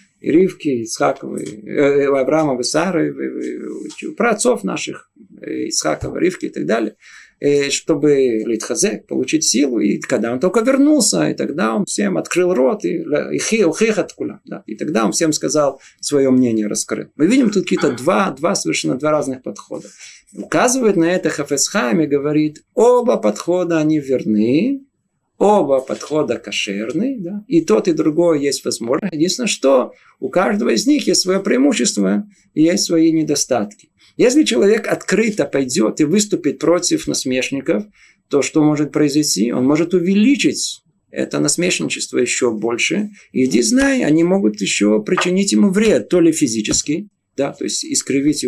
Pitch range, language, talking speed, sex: 130-200 Hz, Russian, 135 wpm, male